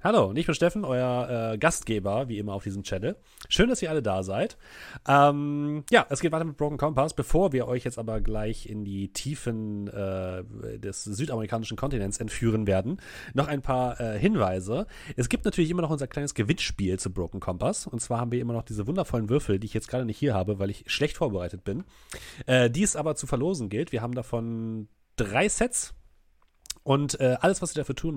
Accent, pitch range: German, 105-140 Hz